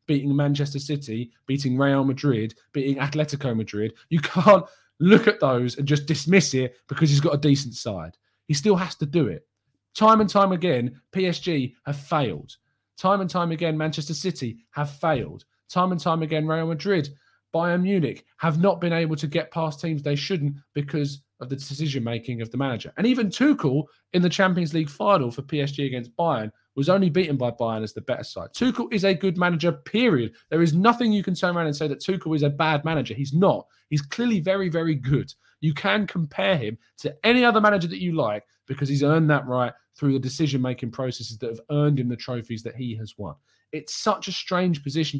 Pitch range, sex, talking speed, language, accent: 130-175 Hz, male, 205 wpm, English, British